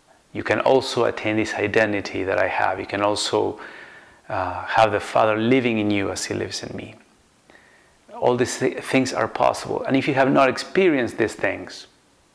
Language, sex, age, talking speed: English, male, 30-49, 185 wpm